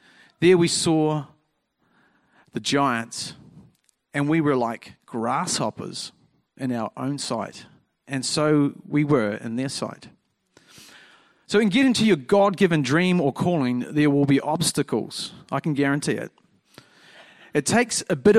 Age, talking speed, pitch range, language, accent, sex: 40-59, 135 wpm, 130-170 Hz, English, Australian, male